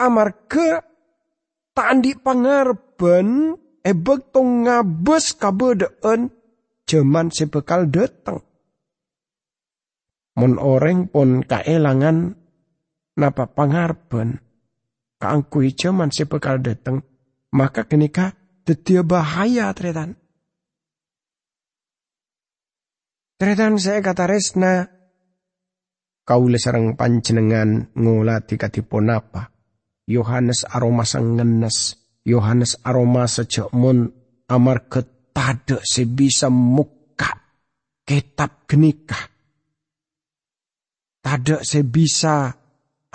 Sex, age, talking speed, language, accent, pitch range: male, 50-69, 70 wpm, English, Indonesian, 125-170 Hz